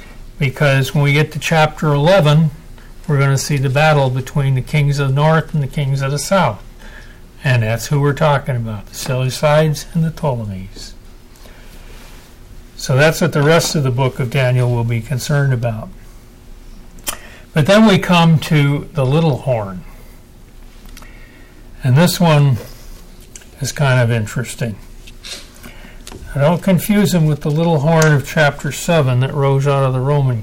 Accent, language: American, English